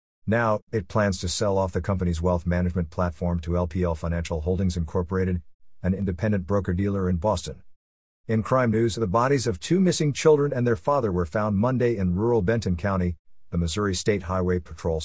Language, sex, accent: English, male, American